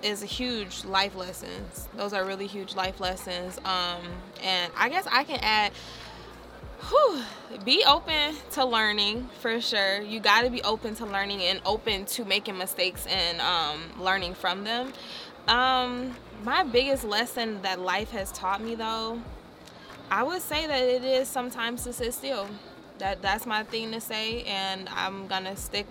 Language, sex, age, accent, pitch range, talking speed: English, female, 20-39, American, 195-250 Hz, 160 wpm